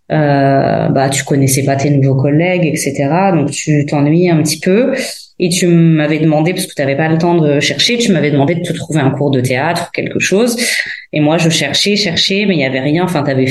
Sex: female